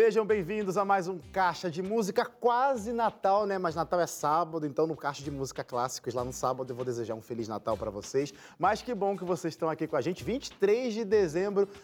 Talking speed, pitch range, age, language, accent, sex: 230 wpm, 140-195 Hz, 20-39, Portuguese, Brazilian, male